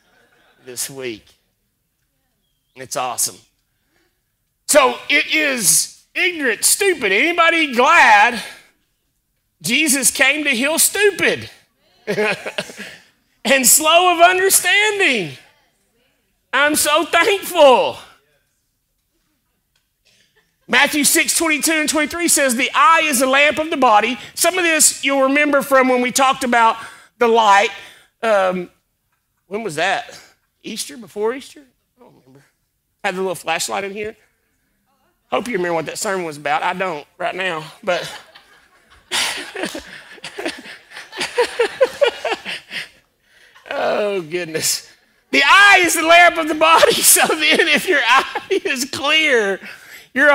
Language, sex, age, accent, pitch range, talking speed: English, male, 40-59, American, 240-325 Hz, 115 wpm